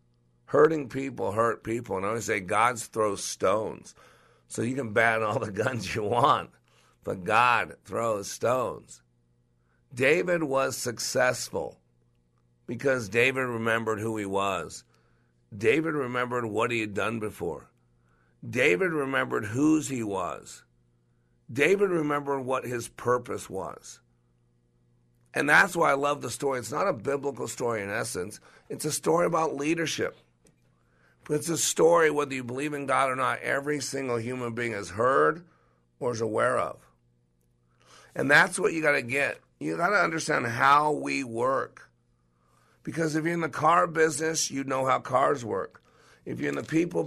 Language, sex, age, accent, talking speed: English, male, 50-69, American, 155 wpm